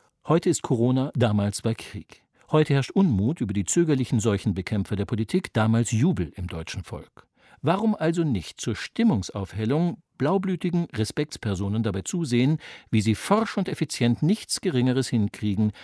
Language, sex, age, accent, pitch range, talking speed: German, male, 50-69, German, 100-145 Hz, 140 wpm